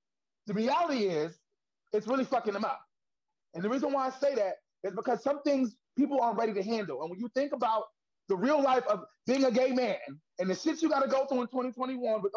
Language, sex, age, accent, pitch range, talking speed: English, male, 30-49, American, 185-265 Hz, 230 wpm